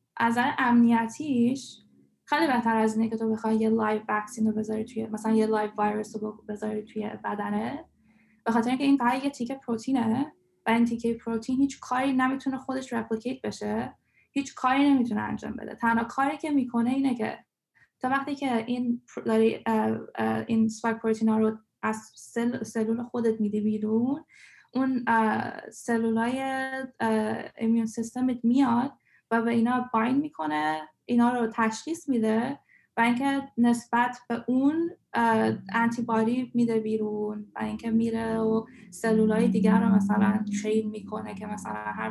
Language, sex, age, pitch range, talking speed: Persian, female, 10-29, 215-245 Hz, 145 wpm